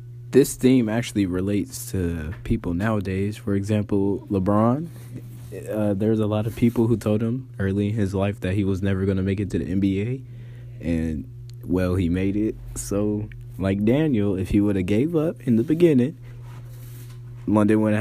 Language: English